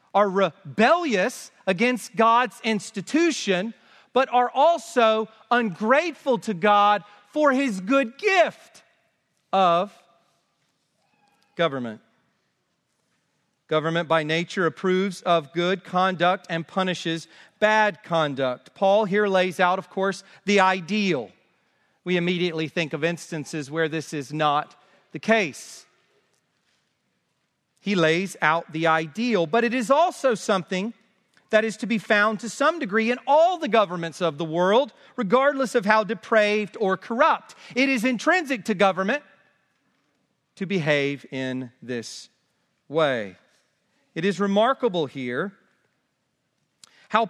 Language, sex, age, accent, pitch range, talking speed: English, male, 40-59, American, 165-230 Hz, 120 wpm